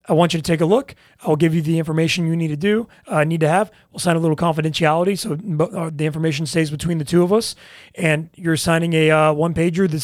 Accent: American